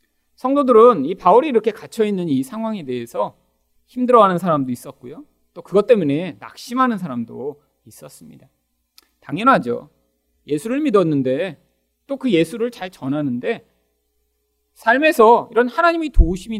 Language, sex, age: Korean, male, 40-59